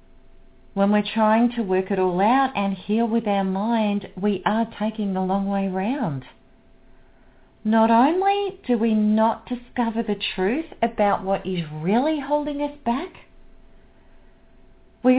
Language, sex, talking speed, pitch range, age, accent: English, female, 140 wpm, 195-275 Hz, 40-59, Australian